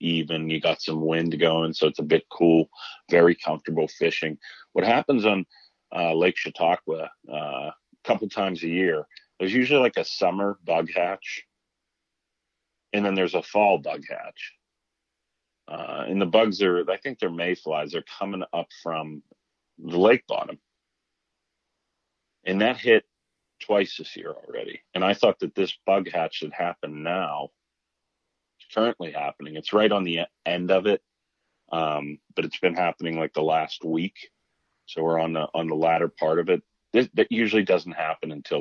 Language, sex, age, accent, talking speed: English, male, 40-59, American, 165 wpm